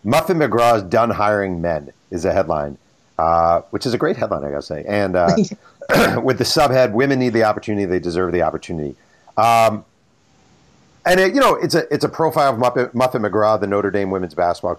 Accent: American